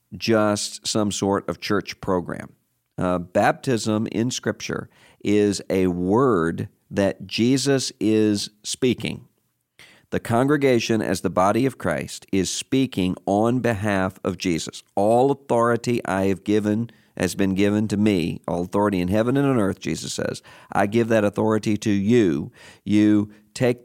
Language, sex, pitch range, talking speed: English, male, 95-115 Hz, 145 wpm